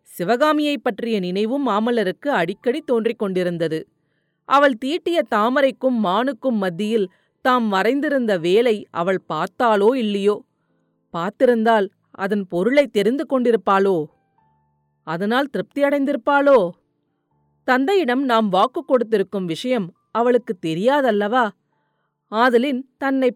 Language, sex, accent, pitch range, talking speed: Tamil, female, native, 195-270 Hz, 85 wpm